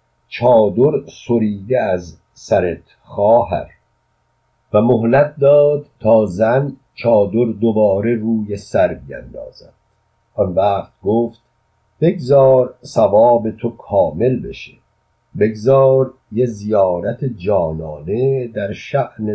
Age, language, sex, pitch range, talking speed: 50-69, Persian, male, 100-120 Hz, 90 wpm